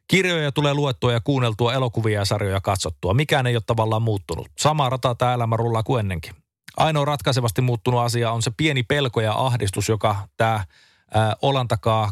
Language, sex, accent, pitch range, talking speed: Finnish, male, native, 100-130 Hz, 175 wpm